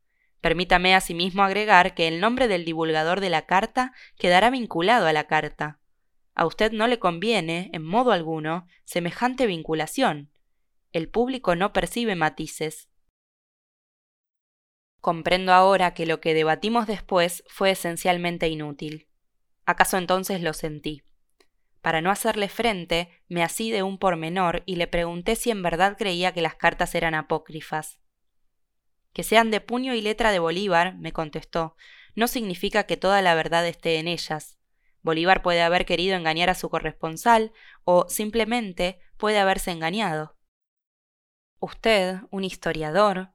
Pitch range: 160-200 Hz